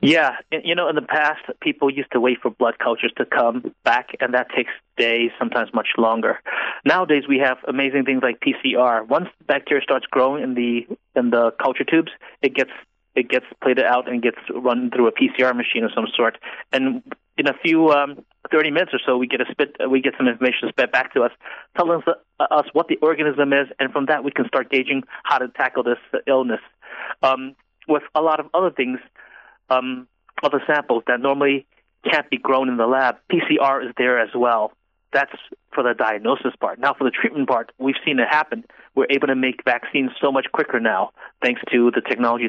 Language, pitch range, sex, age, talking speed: English, 120-140 Hz, male, 30-49, 205 wpm